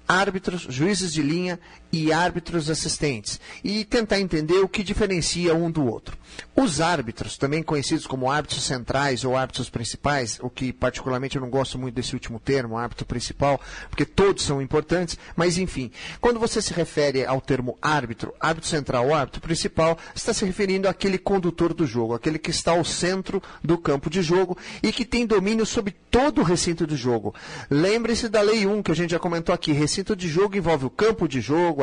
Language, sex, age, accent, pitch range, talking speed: Portuguese, male, 40-59, Brazilian, 145-185 Hz, 190 wpm